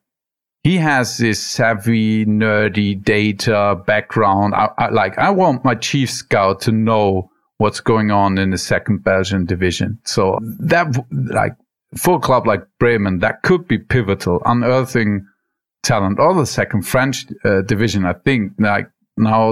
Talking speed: 145 wpm